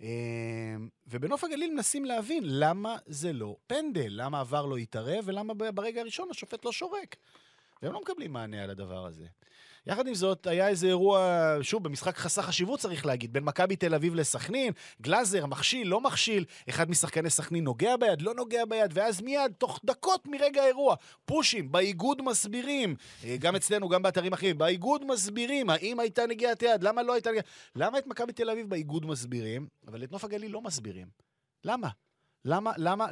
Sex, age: male, 30-49